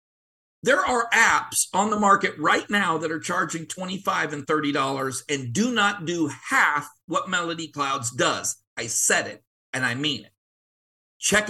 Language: English